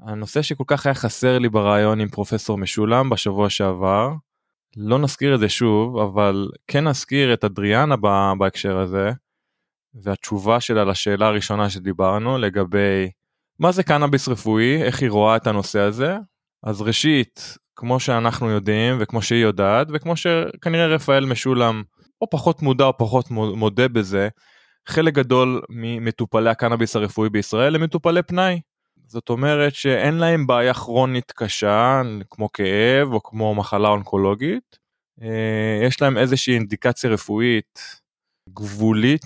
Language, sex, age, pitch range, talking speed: Hebrew, male, 20-39, 105-145 Hz, 135 wpm